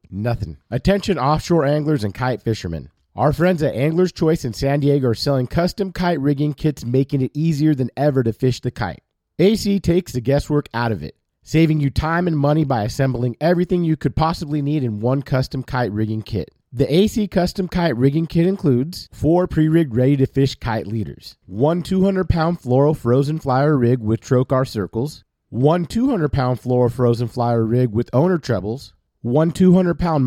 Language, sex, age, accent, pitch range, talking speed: English, male, 40-59, American, 120-160 Hz, 180 wpm